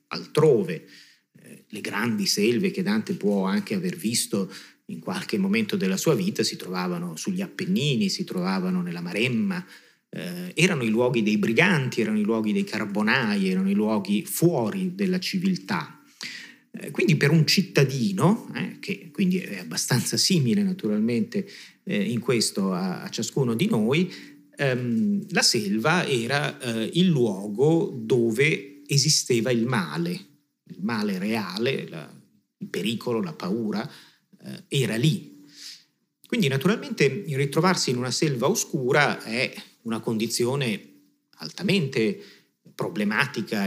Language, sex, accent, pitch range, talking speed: Italian, male, native, 120-195 Hz, 130 wpm